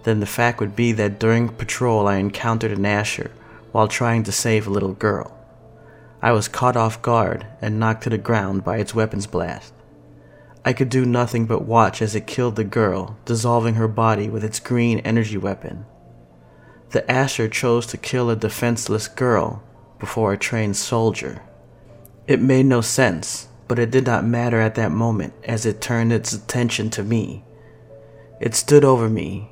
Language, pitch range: English, 110-120 Hz